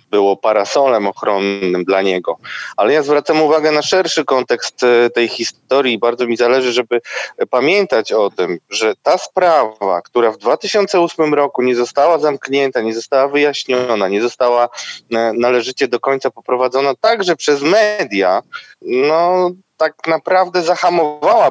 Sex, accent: male, native